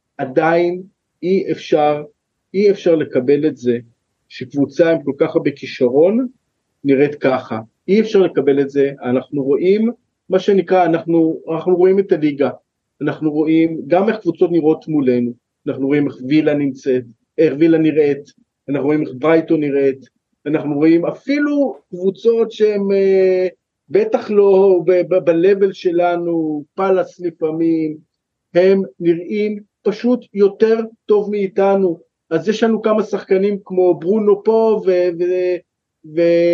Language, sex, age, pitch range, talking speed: Hebrew, male, 40-59, 155-195 Hz, 135 wpm